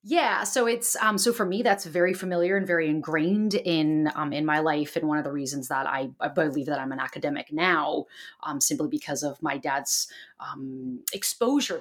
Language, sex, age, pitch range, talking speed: English, female, 30-49, 155-200 Hz, 205 wpm